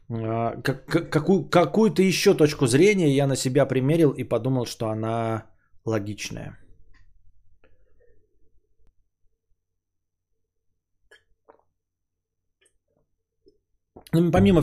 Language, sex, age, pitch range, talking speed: Bulgarian, male, 20-39, 105-155 Hz, 60 wpm